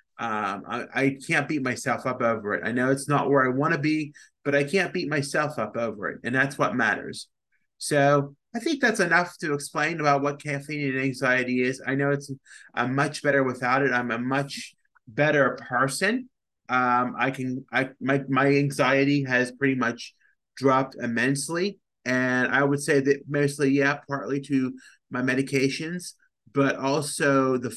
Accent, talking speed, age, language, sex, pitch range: American, 175 wpm, 30-49, English, male, 120-140 Hz